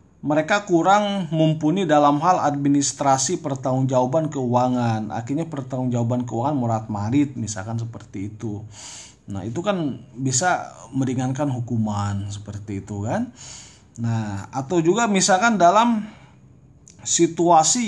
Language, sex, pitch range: Indonesian, male, 110-150 Hz